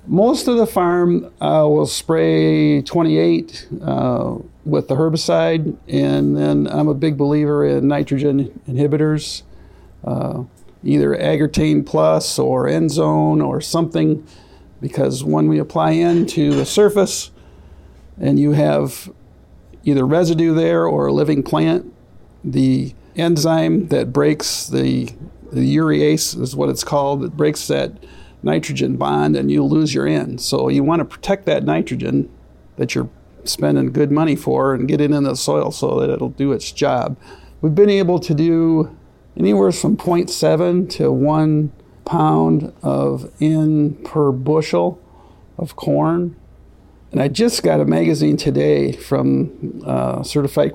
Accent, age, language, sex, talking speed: American, 50-69, English, male, 140 wpm